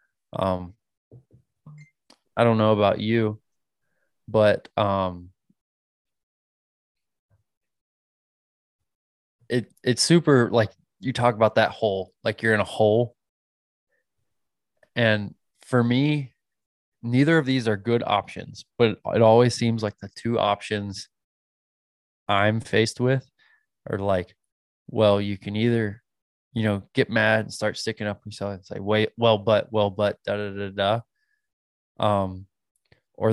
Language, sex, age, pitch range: English, male, 20-39, 95-115 Hz